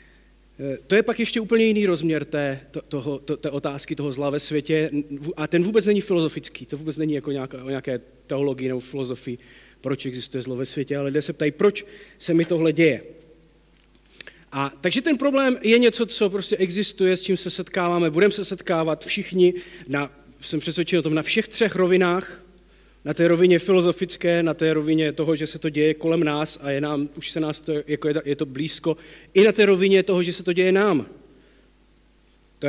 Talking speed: 195 wpm